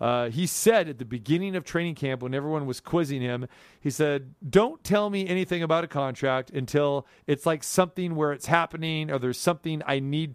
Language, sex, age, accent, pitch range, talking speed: English, male, 40-59, American, 140-180 Hz, 205 wpm